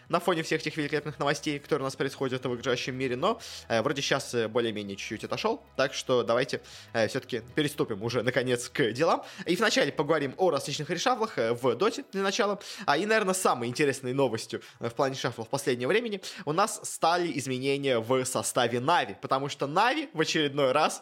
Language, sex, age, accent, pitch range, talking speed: Russian, male, 20-39, native, 130-185 Hz, 185 wpm